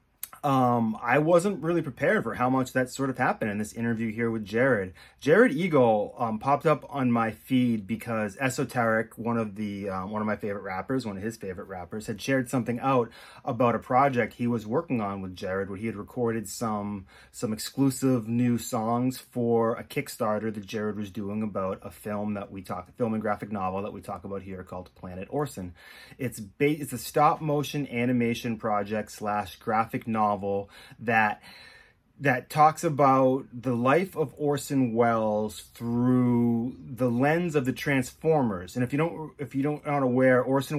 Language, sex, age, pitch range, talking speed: English, male, 30-49, 100-125 Hz, 185 wpm